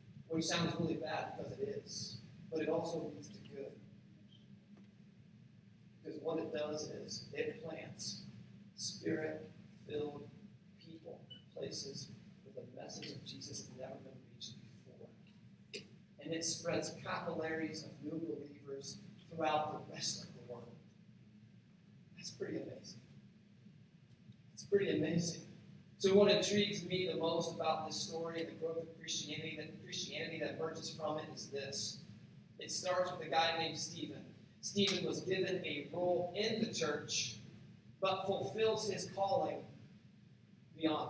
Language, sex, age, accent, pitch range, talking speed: English, male, 40-59, American, 155-185 Hz, 135 wpm